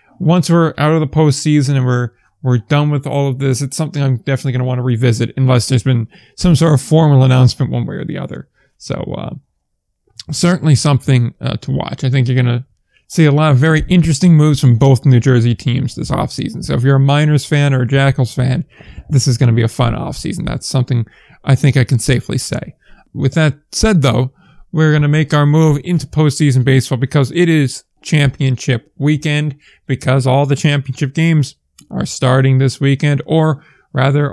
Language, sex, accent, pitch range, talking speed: English, male, American, 130-155 Hz, 205 wpm